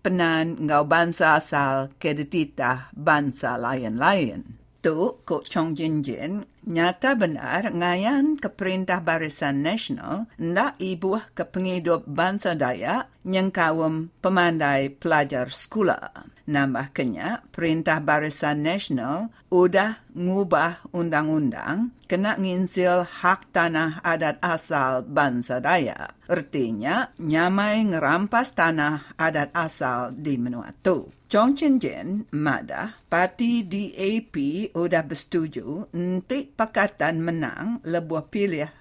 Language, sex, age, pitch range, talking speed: English, female, 50-69, 150-195 Hz, 100 wpm